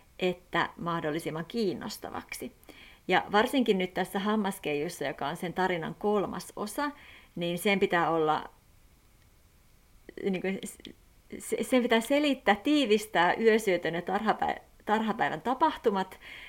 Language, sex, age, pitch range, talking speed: Finnish, female, 30-49, 170-215 Hz, 100 wpm